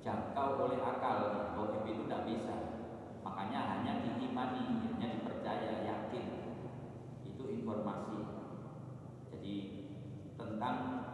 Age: 40-59